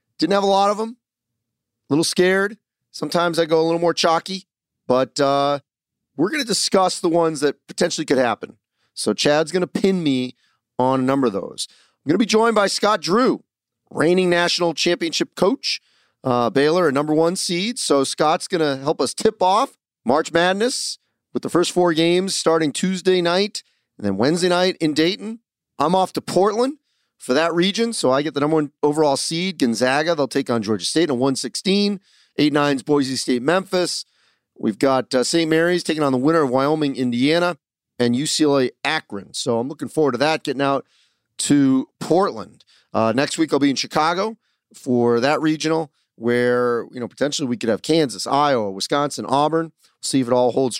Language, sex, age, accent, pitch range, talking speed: English, male, 40-59, American, 130-180 Hz, 185 wpm